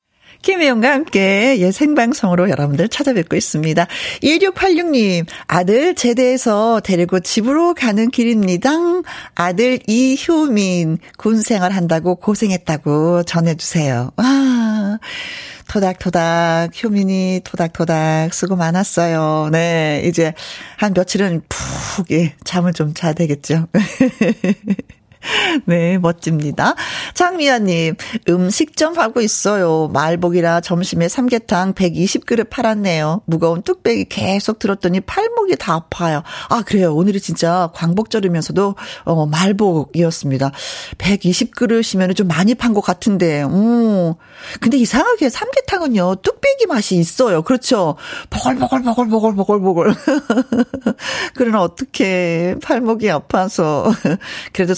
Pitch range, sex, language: 170-245 Hz, female, Korean